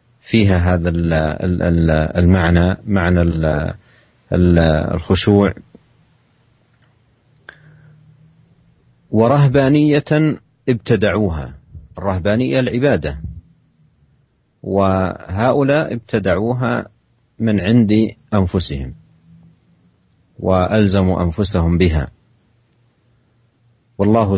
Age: 40-59